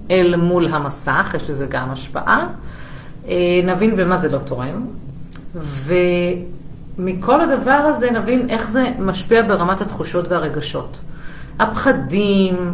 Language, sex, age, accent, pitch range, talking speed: Hebrew, female, 40-59, native, 160-195 Hz, 110 wpm